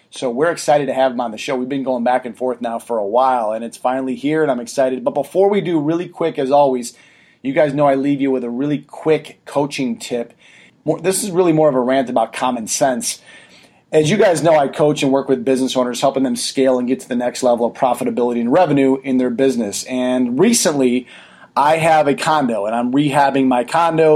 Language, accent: English, American